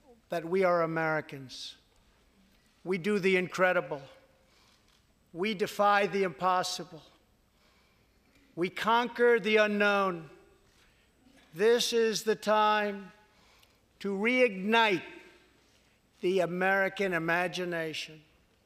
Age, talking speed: 60-79, 80 wpm